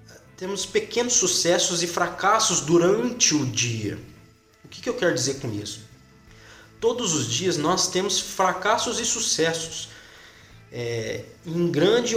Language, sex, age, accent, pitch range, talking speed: Portuguese, male, 20-39, Brazilian, 135-205 Hz, 125 wpm